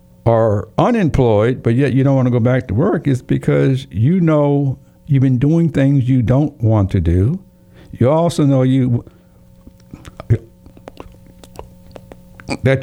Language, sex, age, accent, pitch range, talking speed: English, male, 60-79, American, 110-145 Hz, 140 wpm